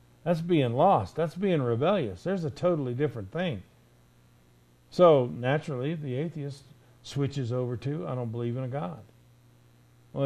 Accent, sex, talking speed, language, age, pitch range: American, male, 145 wpm, English, 50-69, 115-155 Hz